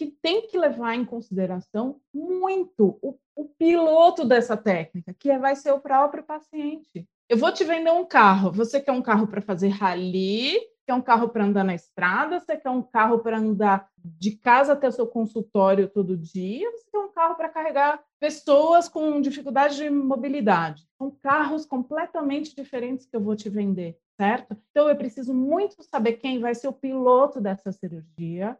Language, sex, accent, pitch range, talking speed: Portuguese, female, Brazilian, 215-285 Hz, 180 wpm